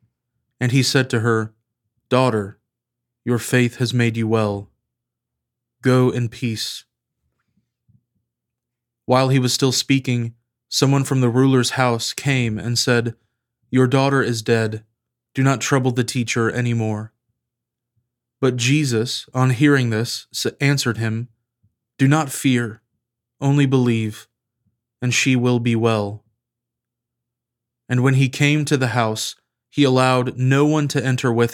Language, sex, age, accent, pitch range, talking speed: English, male, 20-39, American, 115-130 Hz, 135 wpm